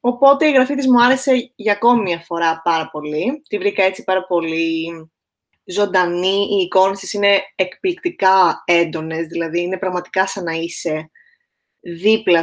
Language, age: Greek, 20-39